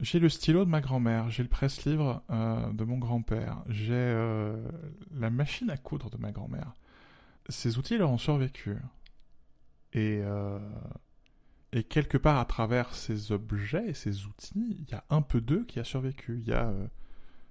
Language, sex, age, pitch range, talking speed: French, male, 20-39, 110-140 Hz, 170 wpm